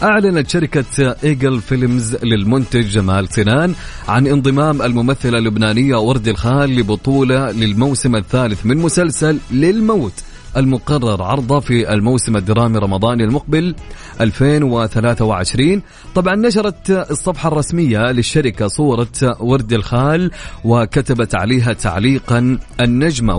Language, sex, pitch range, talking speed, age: Arabic, male, 110-145 Hz, 100 wpm, 30-49